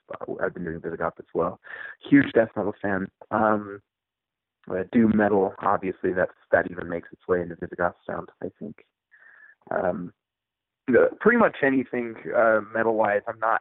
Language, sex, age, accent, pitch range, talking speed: English, male, 30-49, American, 90-115 Hz, 155 wpm